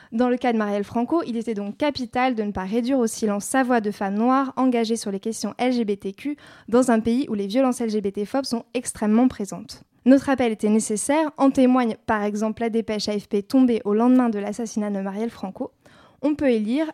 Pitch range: 215-260 Hz